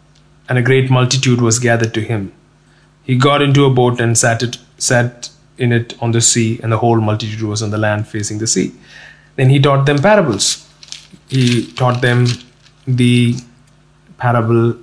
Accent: Indian